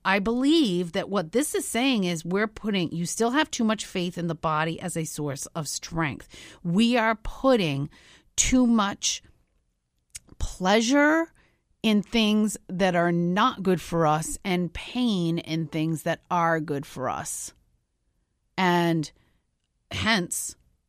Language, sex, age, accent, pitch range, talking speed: English, female, 40-59, American, 160-210 Hz, 140 wpm